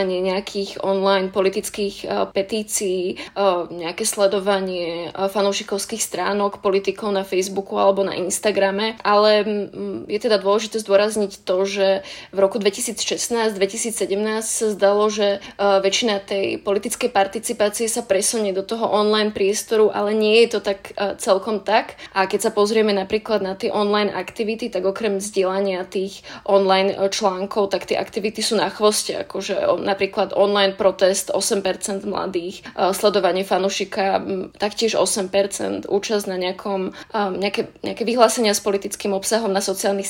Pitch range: 195-215 Hz